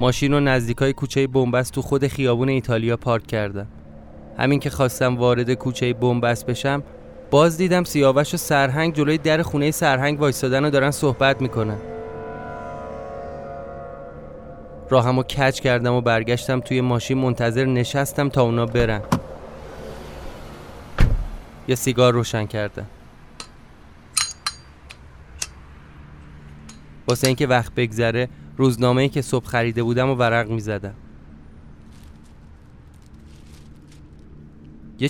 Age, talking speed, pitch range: 20-39, 110 wpm, 80-135 Hz